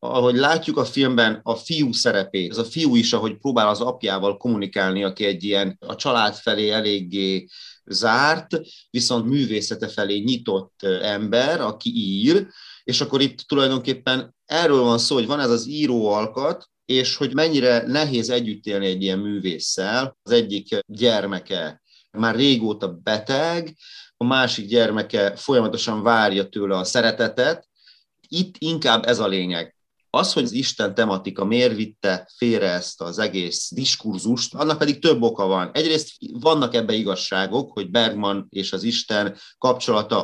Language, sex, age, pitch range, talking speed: Hungarian, male, 30-49, 100-135 Hz, 145 wpm